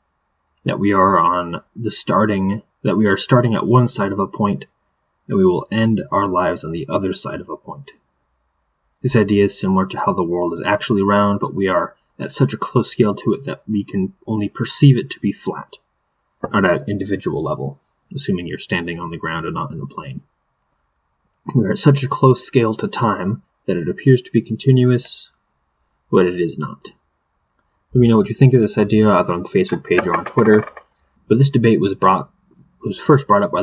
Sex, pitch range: male, 90-120 Hz